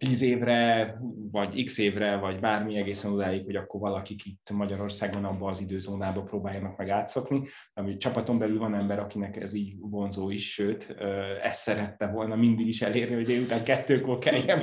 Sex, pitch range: male, 95-115 Hz